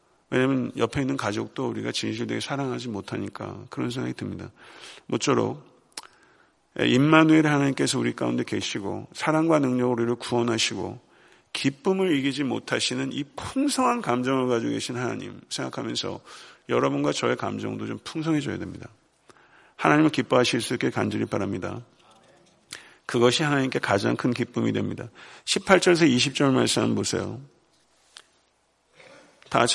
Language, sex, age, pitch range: Korean, male, 50-69, 115-140 Hz